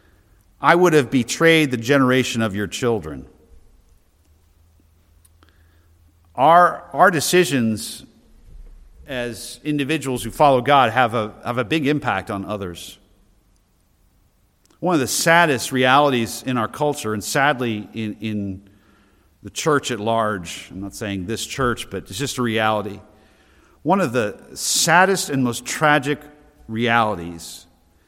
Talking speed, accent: 125 wpm, American